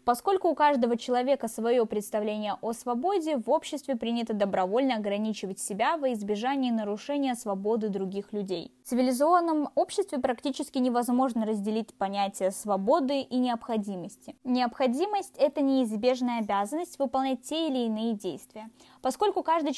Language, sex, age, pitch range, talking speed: Russian, female, 20-39, 215-285 Hz, 125 wpm